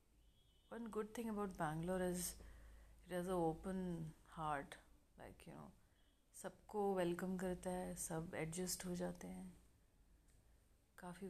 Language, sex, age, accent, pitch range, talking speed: Hindi, female, 30-49, native, 155-185 Hz, 125 wpm